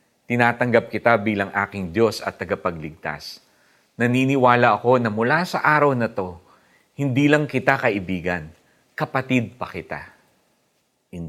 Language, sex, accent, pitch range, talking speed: Filipino, male, native, 100-145 Hz, 120 wpm